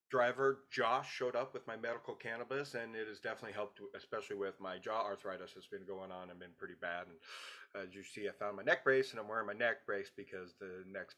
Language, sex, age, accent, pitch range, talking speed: English, male, 40-59, American, 110-125 Hz, 235 wpm